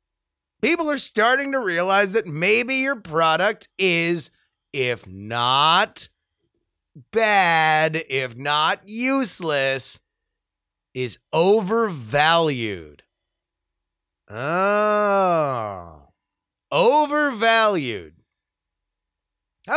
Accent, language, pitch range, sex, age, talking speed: American, English, 115-190 Hz, male, 30-49, 65 wpm